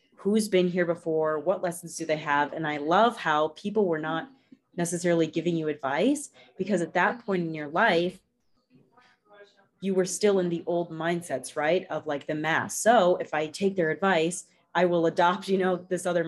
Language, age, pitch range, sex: English, 30-49, 160-200 Hz, female